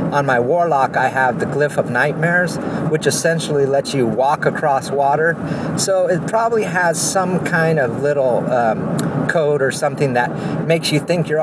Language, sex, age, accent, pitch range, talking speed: English, male, 50-69, American, 140-180 Hz, 175 wpm